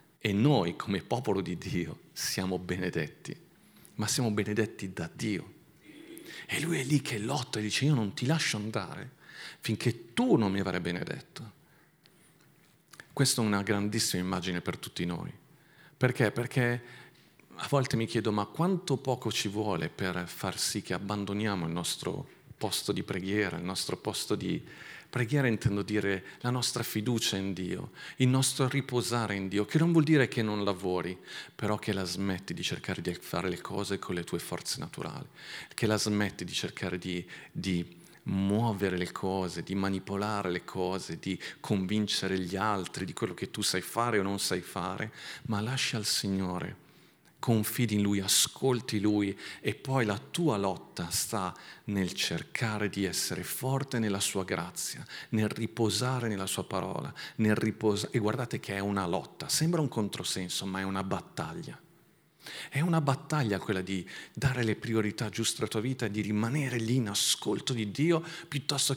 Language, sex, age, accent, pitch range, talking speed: Italian, male, 40-59, native, 95-125 Hz, 165 wpm